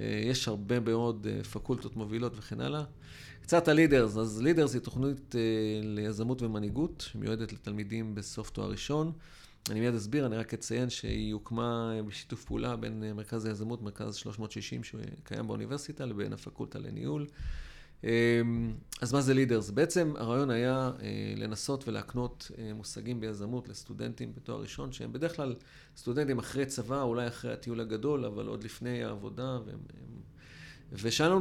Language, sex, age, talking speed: Hebrew, male, 40-59, 135 wpm